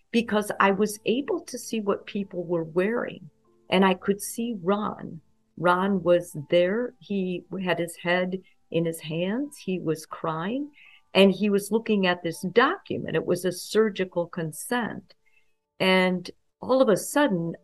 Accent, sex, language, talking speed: American, female, English, 155 wpm